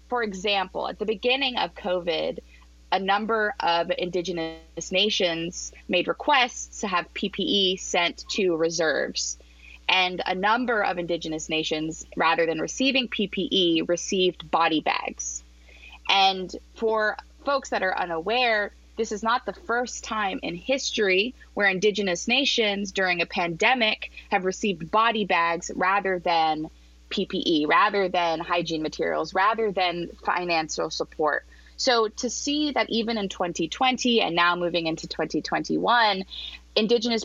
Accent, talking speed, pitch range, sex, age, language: American, 130 wpm, 165-220 Hz, female, 20-39, English